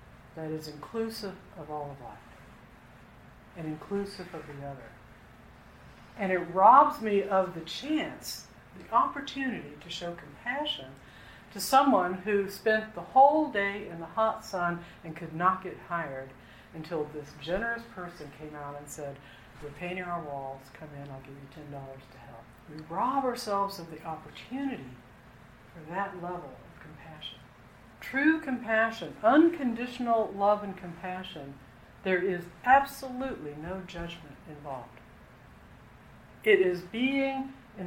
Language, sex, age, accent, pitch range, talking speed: English, female, 60-79, American, 140-220 Hz, 135 wpm